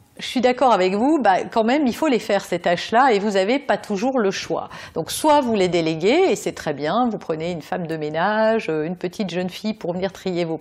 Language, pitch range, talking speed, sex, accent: French, 185-270 Hz, 250 wpm, female, French